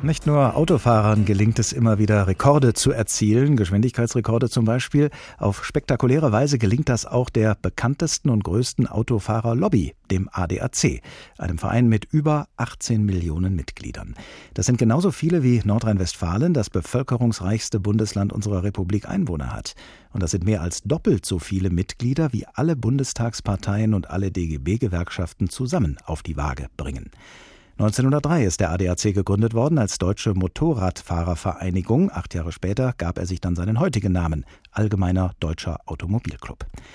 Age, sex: 50-69, male